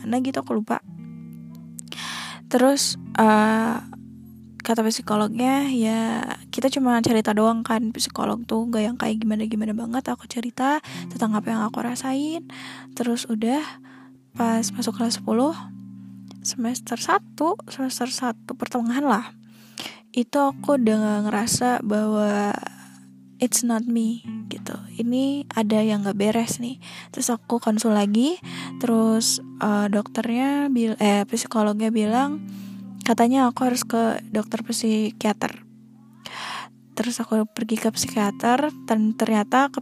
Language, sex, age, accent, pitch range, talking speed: Indonesian, female, 10-29, native, 215-245 Hz, 120 wpm